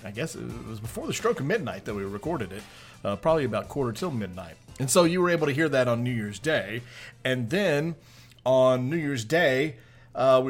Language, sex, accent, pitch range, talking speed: English, male, American, 110-135 Hz, 225 wpm